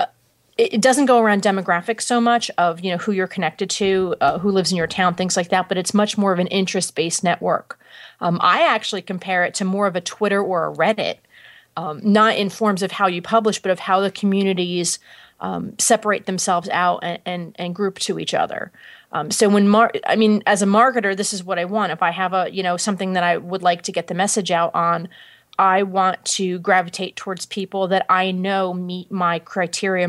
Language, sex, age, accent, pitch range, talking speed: English, female, 30-49, American, 175-205 Hz, 220 wpm